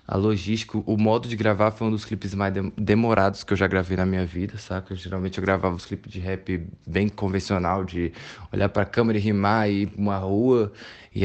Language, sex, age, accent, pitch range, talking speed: Portuguese, male, 20-39, Brazilian, 100-115 Hz, 225 wpm